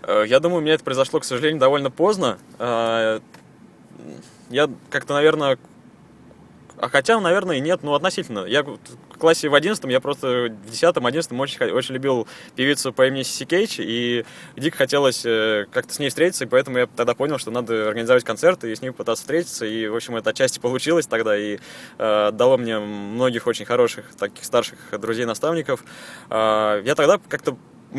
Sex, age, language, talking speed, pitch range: male, 20-39, Russian, 170 wpm, 120-165 Hz